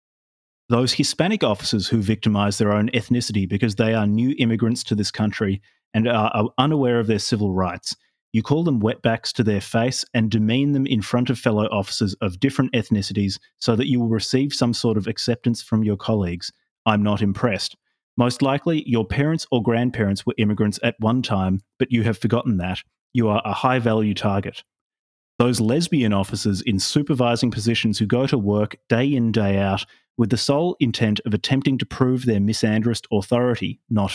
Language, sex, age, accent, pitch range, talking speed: English, male, 30-49, Australian, 105-125 Hz, 180 wpm